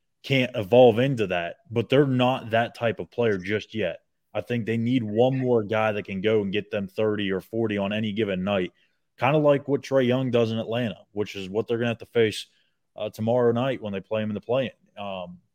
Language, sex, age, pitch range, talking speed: English, male, 30-49, 105-125 Hz, 240 wpm